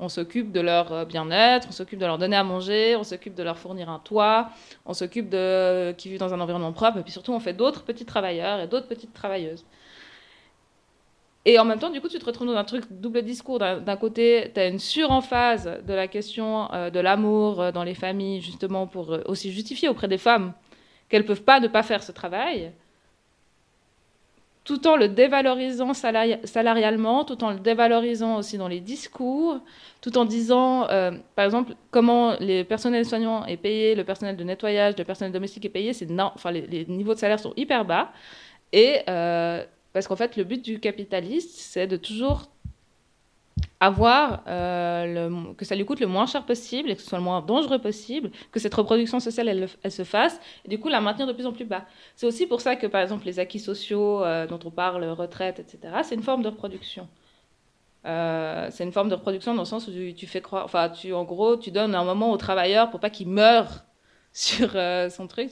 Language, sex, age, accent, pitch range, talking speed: French, female, 20-39, French, 180-235 Hz, 210 wpm